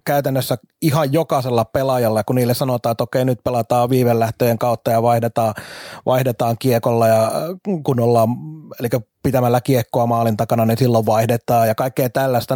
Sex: male